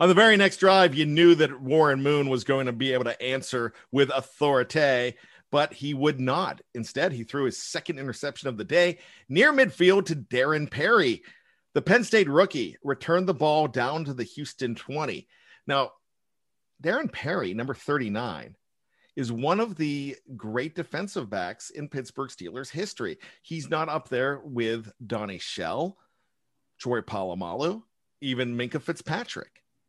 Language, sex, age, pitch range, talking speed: English, male, 40-59, 125-160 Hz, 155 wpm